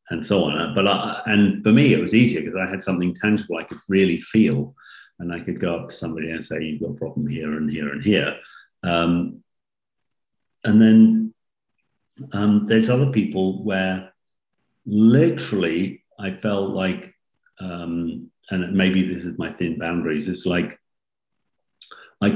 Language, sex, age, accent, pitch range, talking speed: English, male, 50-69, British, 85-110 Hz, 160 wpm